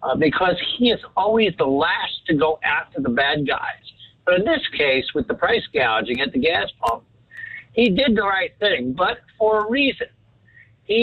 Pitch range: 150-210 Hz